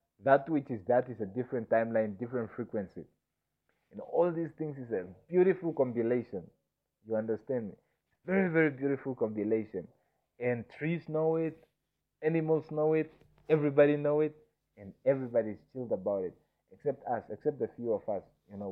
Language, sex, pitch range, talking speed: English, male, 120-150 Hz, 160 wpm